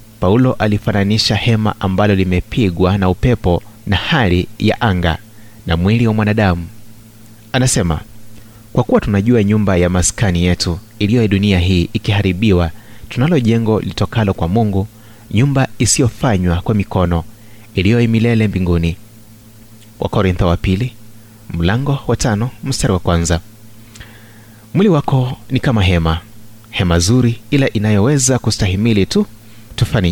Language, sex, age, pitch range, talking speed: Swahili, male, 30-49, 100-115 Hz, 120 wpm